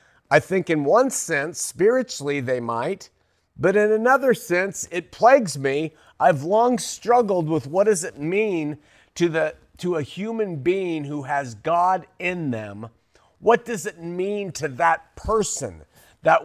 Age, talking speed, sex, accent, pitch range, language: 50-69, 150 wpm, male, American, 160-210 Hz, English